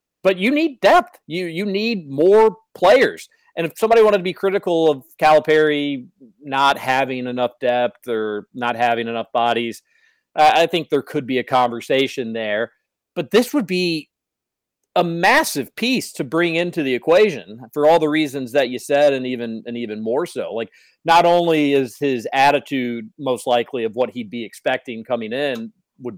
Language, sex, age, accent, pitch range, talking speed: English, male, 40-59, American, 125-170 Hz, 175 wpm